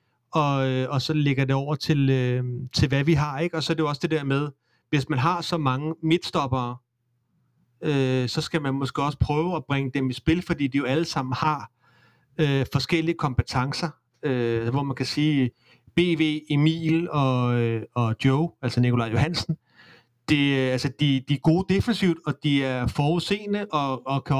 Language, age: Danish, 30-49